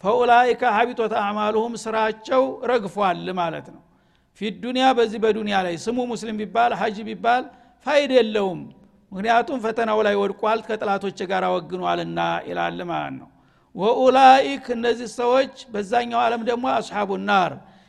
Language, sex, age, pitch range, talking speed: Amharic, male, 60-79, 200-245 Hz, 85 wpm